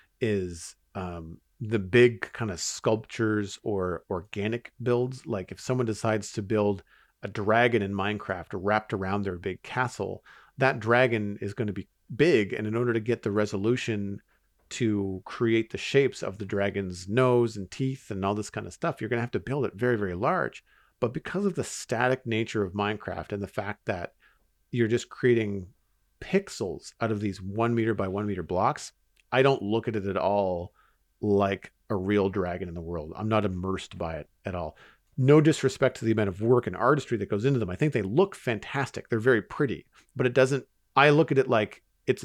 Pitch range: 95-120 Hz